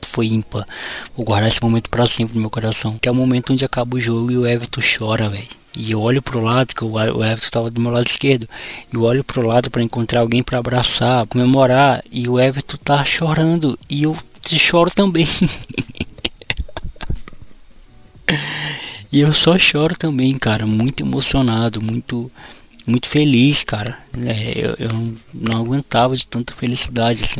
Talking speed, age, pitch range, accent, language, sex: 175 wpm, 20-39, 115-140 Hz, Brazilian, Portuguese, male